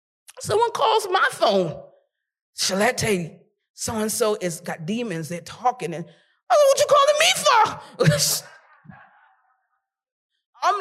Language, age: English, 40-59